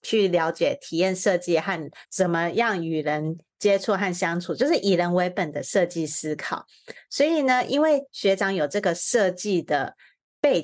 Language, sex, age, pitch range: Chinese, female, 30-49, 170-210 Hz